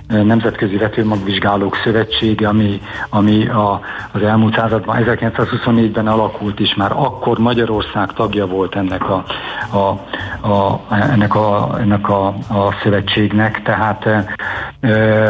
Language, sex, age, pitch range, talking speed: Hungarian, male, 60-79, 100-115 Hz, 115 wpm